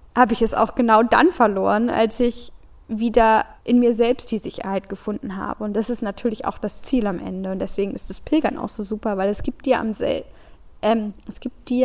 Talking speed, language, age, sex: 190 wpm, German, 10-29, female